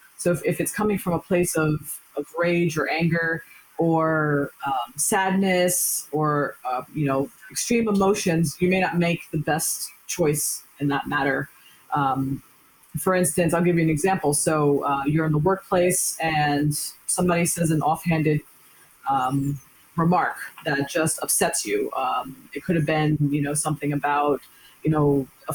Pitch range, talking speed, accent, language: 150-190 Hz, 160 wpm, American, English